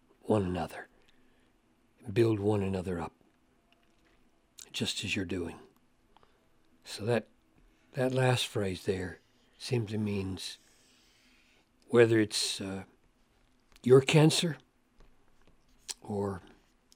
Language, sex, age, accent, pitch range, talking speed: English, male, 60-79, American, 100-125 Hz, 90 wpm